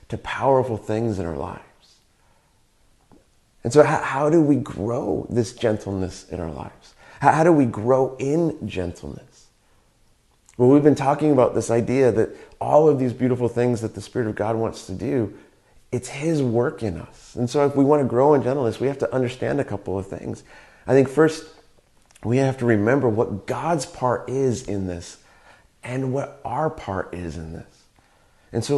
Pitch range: 110-140 Hz